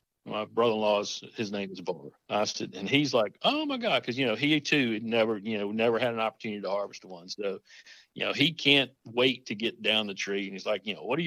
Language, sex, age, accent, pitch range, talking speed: English, male, 50-69, American, 105-130 Hz, 240 wpm